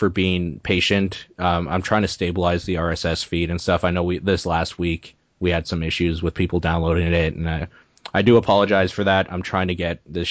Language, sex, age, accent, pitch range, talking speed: English, male, 20-39, American, 85-95 Hz, 220 wpm